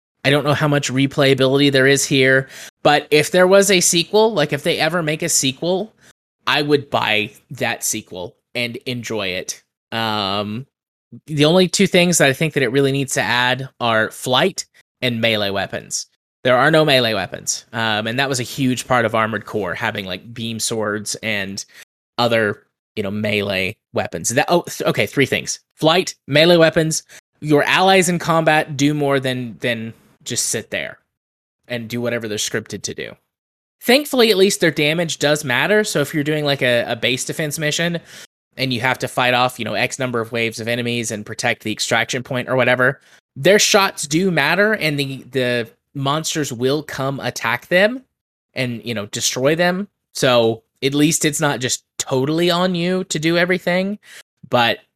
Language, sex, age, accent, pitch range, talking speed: English, male, 20-39, American, 120-160 Hz, 180 wpm